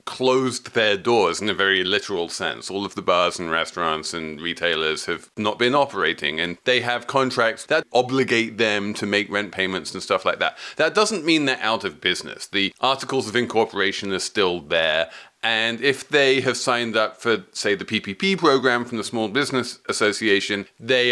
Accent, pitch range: British, 100-130 Hz